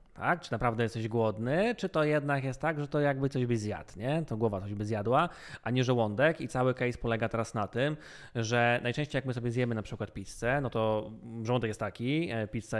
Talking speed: 220 wpm